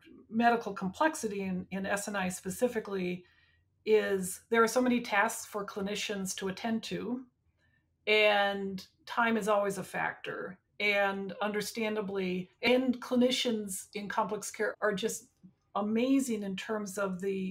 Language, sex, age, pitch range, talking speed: English, female, 50-69, 195-225 Hz, 125 wpm